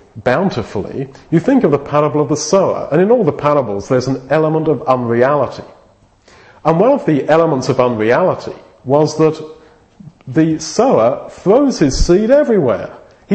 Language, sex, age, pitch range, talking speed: English, male, 40-59, 135-180 Hz, 155 wpm